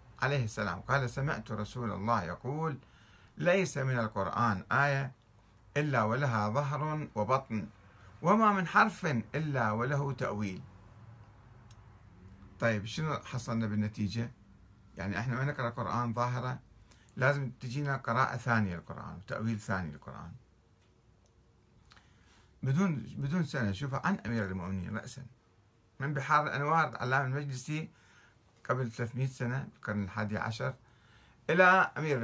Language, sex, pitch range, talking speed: Arabic, male, 105-135 Hz, 110 wpm